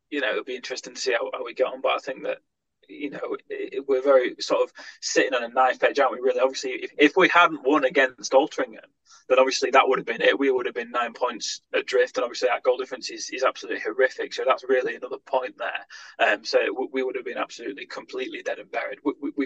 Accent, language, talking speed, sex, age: British, English, 255 wpm, male, 20-39